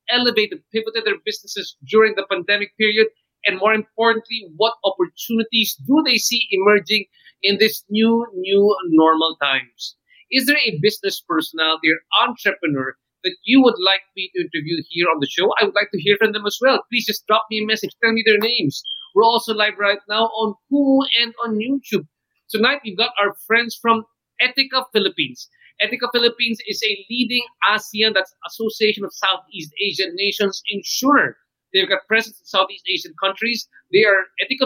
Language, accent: English, Filipino